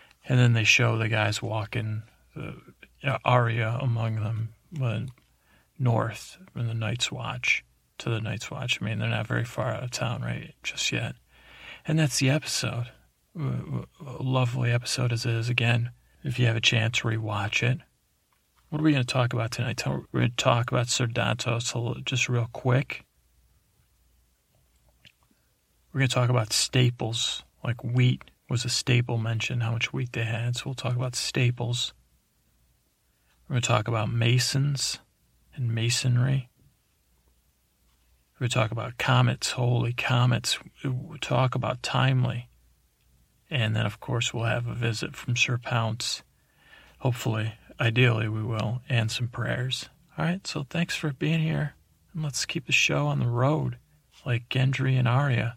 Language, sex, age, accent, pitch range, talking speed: English, male, 40-59, American, 110-130 Hz, 160 wpm